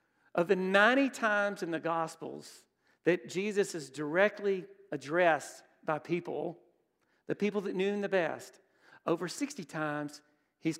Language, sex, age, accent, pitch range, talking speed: English, male, 50-69, American, 160-205 Hz, 140 wpm